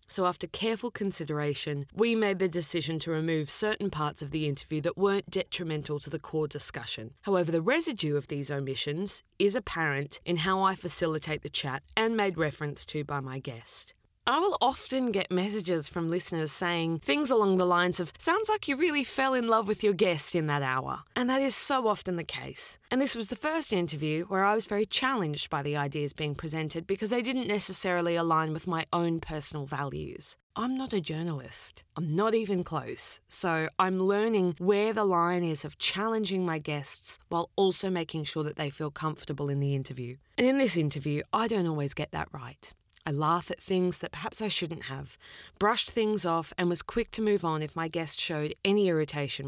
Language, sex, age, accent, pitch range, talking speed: English, female, 20-39, Australian, 150-200 Hz, 200 wpm